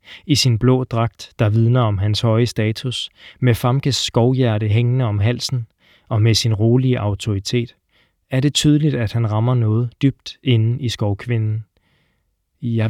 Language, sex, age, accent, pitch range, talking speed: Danish, male, 20-39, native, 110-130 Hz, 155 wpm